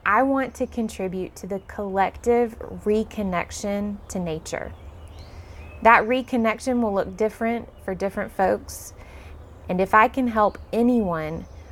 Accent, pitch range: American, 170-225 Hz